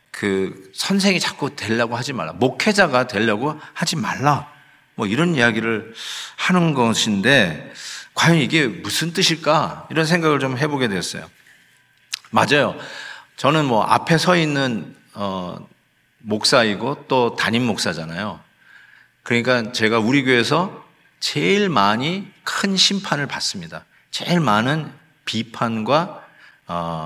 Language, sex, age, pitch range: Korean, male, 40-59, 115-170 Hz